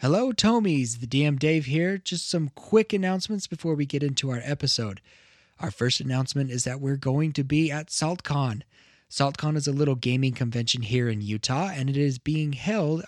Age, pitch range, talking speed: 20-39, 120-150 Hz, 190 wpm